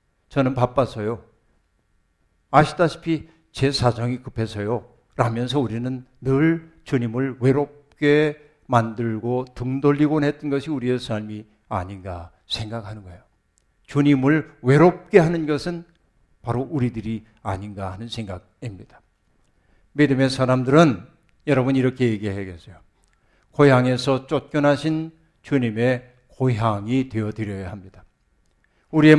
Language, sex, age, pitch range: Korean, male, 60-79, 115-160 Hz